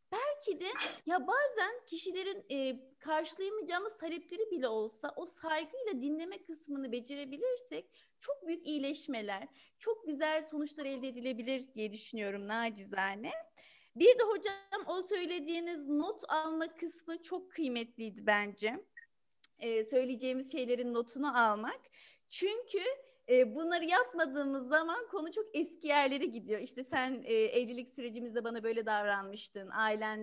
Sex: female